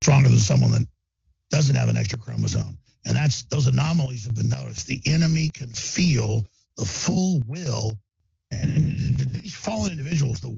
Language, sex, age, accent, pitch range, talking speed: English, male, 50-69, American, 110-145 Hz, 160 wpm